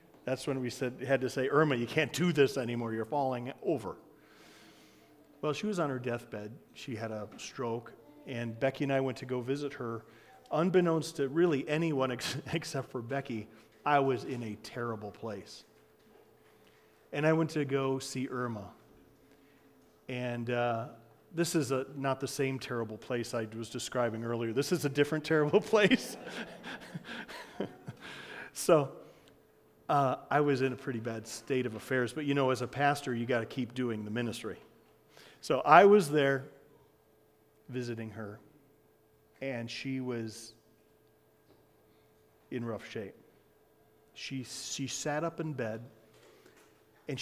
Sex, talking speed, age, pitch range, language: male, 150 wpm, 40-59, 115-150 Hz, English